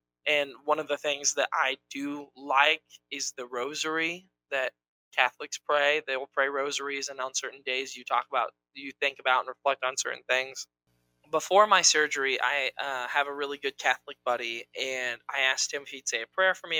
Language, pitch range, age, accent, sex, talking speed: English, 125-150 Hz, 20-39, American, male, 200 wpm